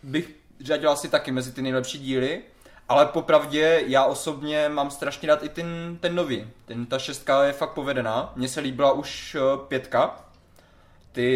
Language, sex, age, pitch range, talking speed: Czech, male, 20-39, 125-145 Hz, 165 wpm